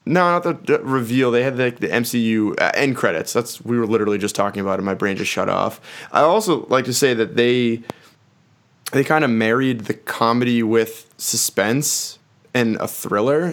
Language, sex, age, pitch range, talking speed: English, male, 20-39, 110-130 Hz, 185 wpm